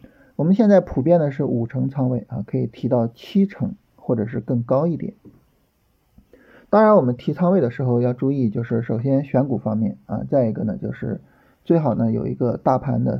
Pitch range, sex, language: 115-165 Hz, male, Chinese